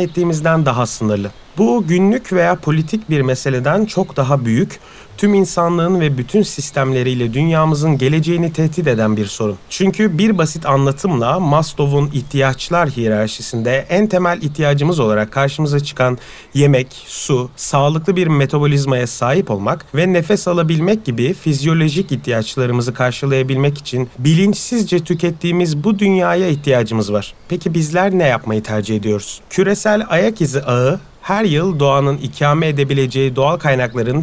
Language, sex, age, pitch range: Turkish, male, 40-59, 125-175 Hz